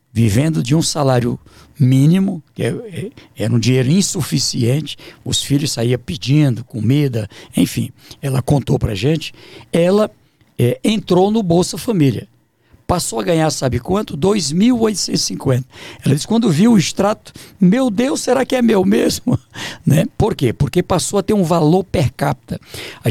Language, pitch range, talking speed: Portuguese, 125-185 Hz, 150 wpm